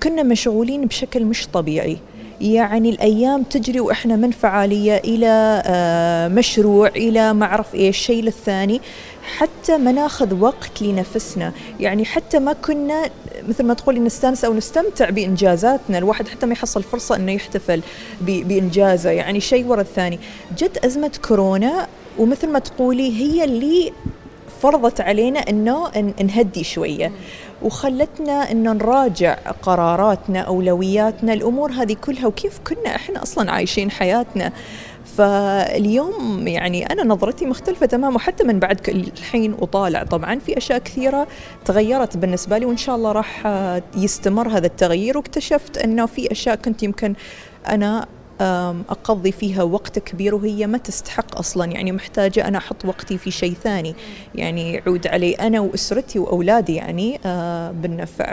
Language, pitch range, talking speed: Arabic, 195-245 Hz, 135 wpm